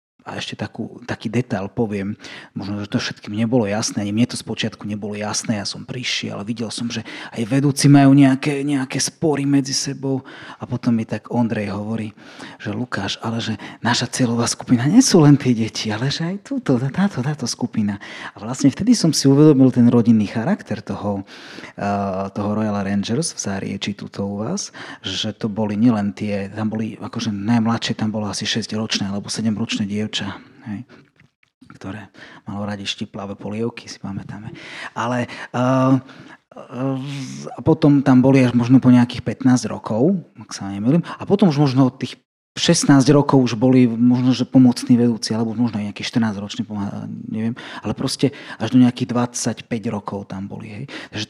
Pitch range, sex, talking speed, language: 110-130 Hz, male, 170 wpm, Slovak